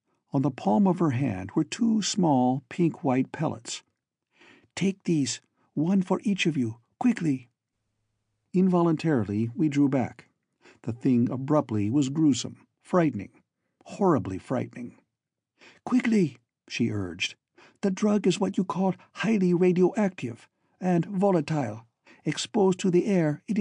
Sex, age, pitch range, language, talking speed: male, 60-79, 120-185 Hz, English, 125 wpm